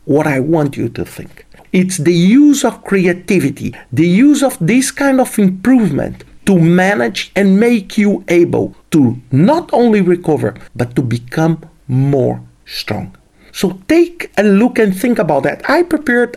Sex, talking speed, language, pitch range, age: male, 160 wpm, English, 160-225 Hz, 50-69